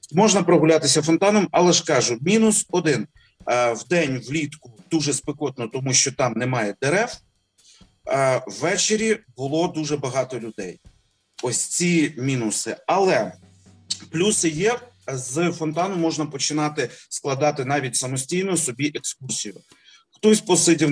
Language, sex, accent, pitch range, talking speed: Ukrainian, male, native, 130-165 Hz, 110 wpm